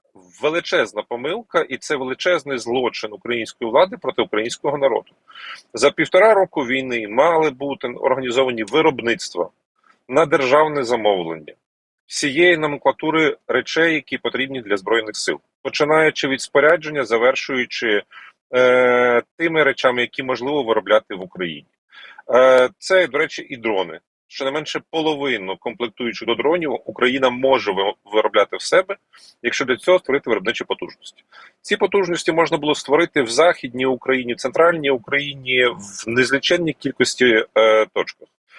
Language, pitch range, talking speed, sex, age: Ukrainian, 125-160 Hz, 130 wpm, male, 40-59